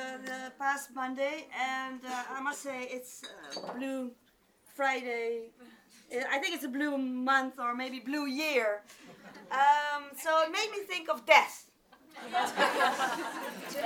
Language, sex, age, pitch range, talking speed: English, female, 30-49, 255-315 Hz, 135 wpm